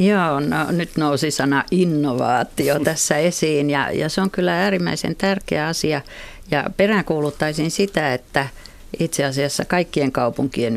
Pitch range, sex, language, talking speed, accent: 135-175 Hz, female, Finnish, 135 wpm, native